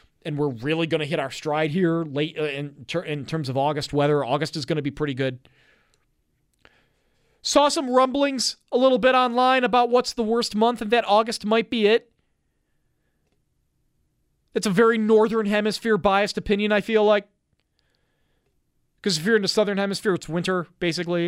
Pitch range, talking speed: 145-210 Hz, 170 wpm